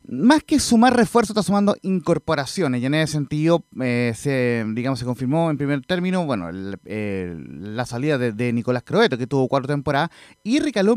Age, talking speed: 30-49, 185 wpm